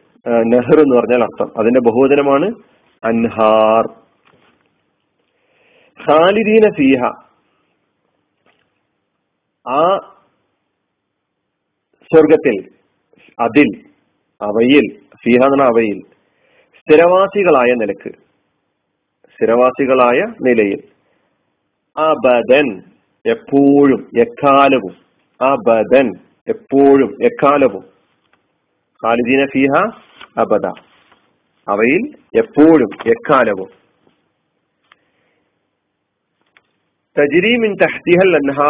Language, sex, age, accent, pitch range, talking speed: Malayalam, male, 40-59, native, 120-155 Hz, 40 wpm